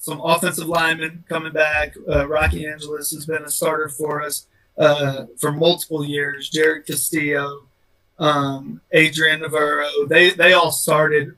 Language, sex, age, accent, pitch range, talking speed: English, male, 30-49, American, 145-165 Hz, 140 wpm